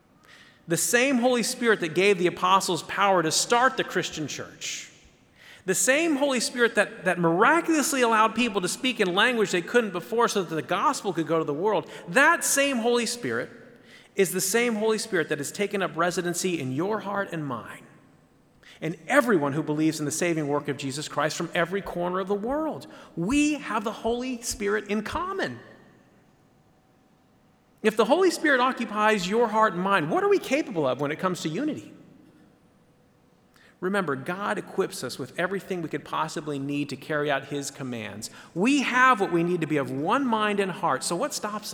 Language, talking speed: English, 190 wpm